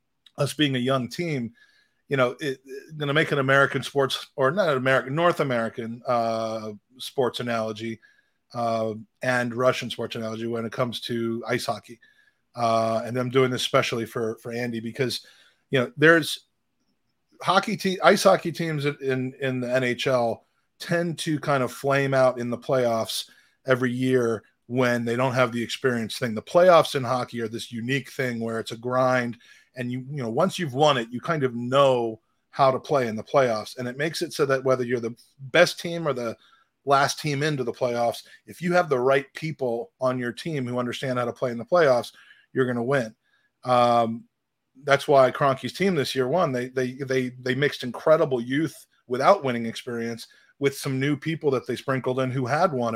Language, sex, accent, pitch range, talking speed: English, male, American, 120-140 Hz, 195 wpm